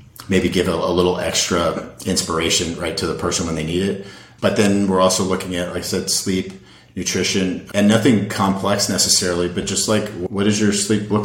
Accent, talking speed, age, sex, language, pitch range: American, 205 wpm, 40-59, male, English, 90-105 Hz